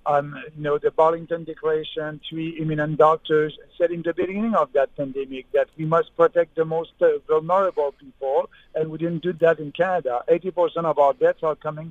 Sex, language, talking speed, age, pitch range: male, English, 195 wpm, 50-69, 155-190 Hz